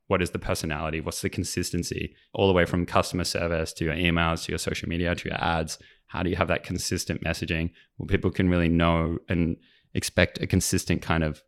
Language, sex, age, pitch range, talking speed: English, male, 20-39, 80-95 Hz, 215 wpm